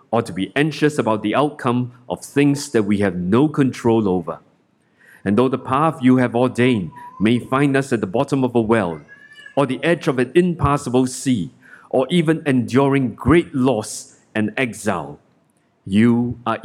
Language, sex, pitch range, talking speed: English, male, 110-140 Hz, 170 wpm